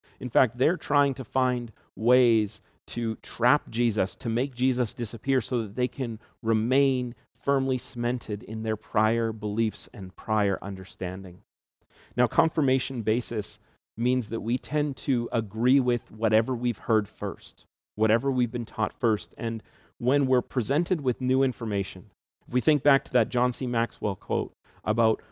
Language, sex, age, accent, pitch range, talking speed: English, male, 40-59, American, 105-130 Hz, 155 wpm